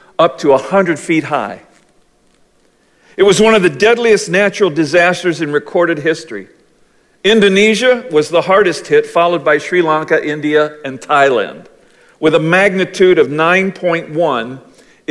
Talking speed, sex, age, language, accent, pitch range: 135 wpm, male, 50-69, English, American, 140-180 Hz